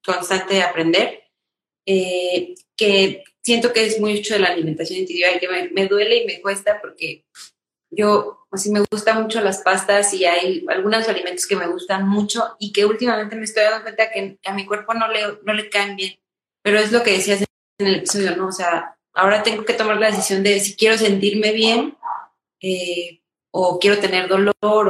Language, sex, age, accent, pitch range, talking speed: Spanish, female, 20-39, Mexican, 185-215 Hz, 195 wpm